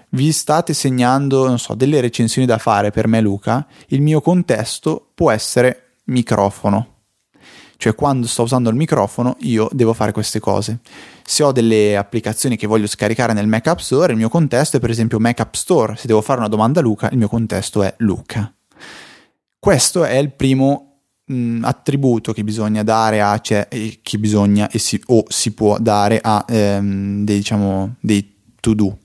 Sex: male